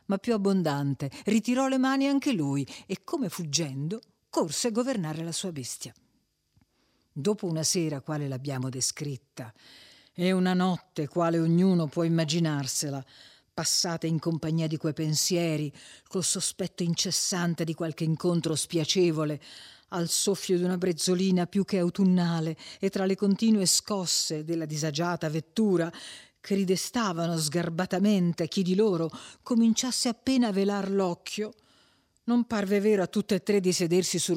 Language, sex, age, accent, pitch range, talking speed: Italian, female, 50-69, native, 155-190 Hz, 140 wpm